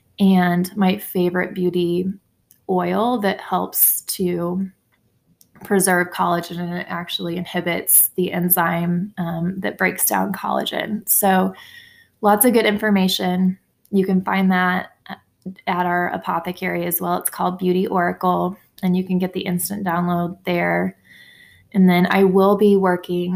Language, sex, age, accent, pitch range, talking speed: English, female, 20-39, American, 175-190 Hz, 135 wpm